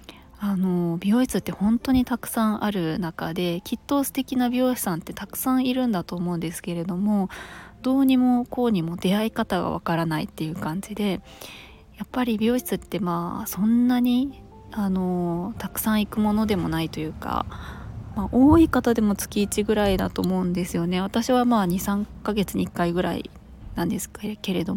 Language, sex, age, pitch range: Japanese, female, 20-39, 170-225 Hz